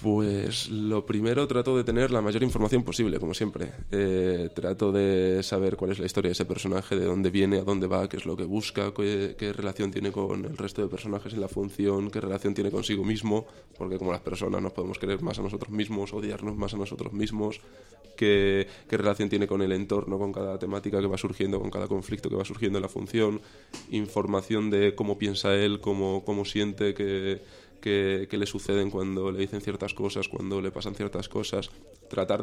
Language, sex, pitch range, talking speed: Spanish, male, 100-110 Hz, 205 wpm